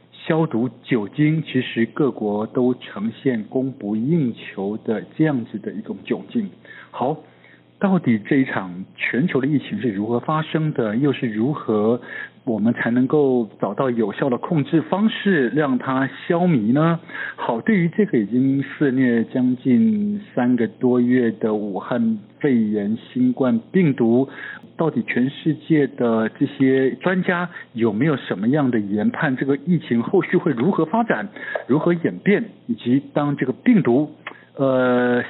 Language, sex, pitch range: Chinese, male, 115-170 Hz